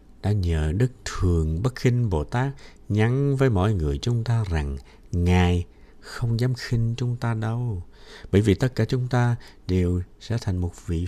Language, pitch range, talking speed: Vietnamese, 80-120 Hz, 180 wpm